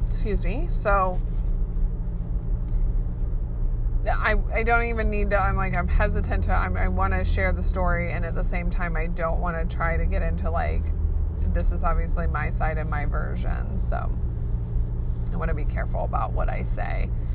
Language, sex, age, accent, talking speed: English, female, 20-39, American, 185 wpm